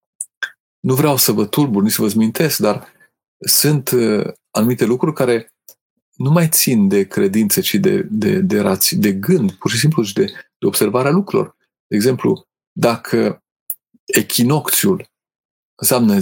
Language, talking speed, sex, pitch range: Romanian, 140 wpm, male, 115-185 Hz